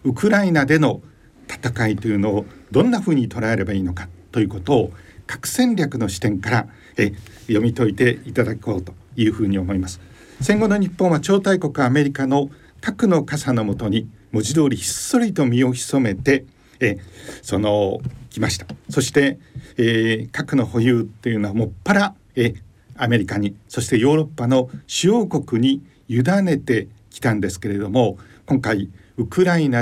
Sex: male